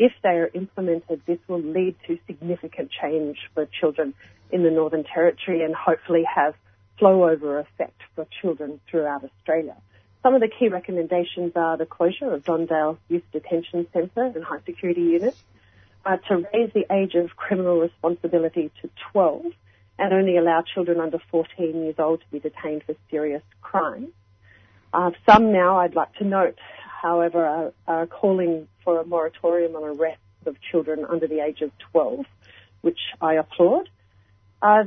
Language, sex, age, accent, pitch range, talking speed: English, female, 40-59, Australian, 155-180 Hz, 155 wpm